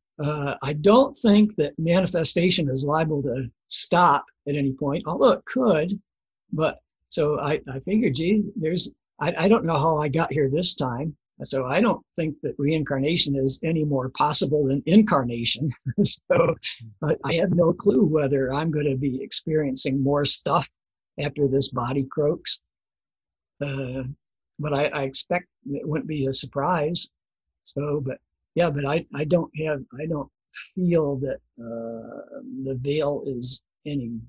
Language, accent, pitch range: English, American, 135-165 Hz